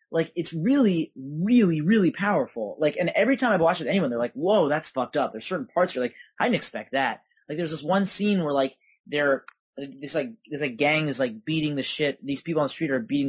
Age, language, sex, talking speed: 20-39, English, male, 250 wpm